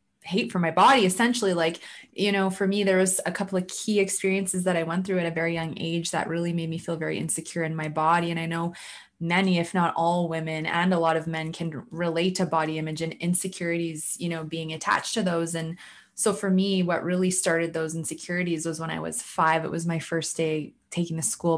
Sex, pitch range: female, 160-185 Hz